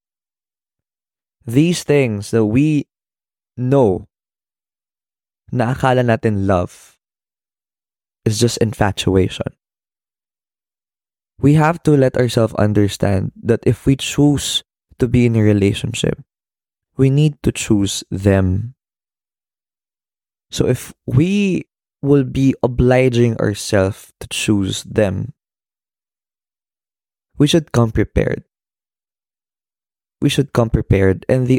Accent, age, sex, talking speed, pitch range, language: native, 20-39, male, 100 wpm, 100-130 Hz, Filipino